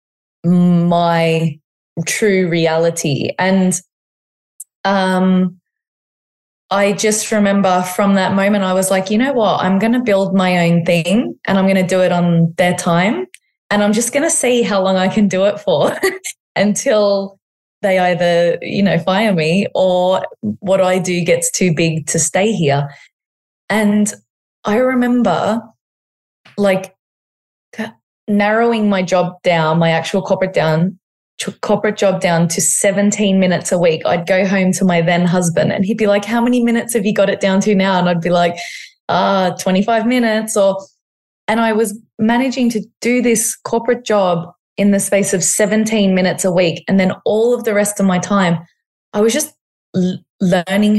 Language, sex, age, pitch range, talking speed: English, female, 20-39, 180-210 Hz, 165 wpm